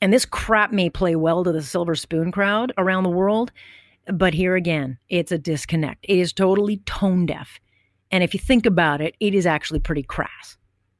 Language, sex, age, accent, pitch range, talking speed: English, female, 40-59, American, 165-245 Hz, 195 wpm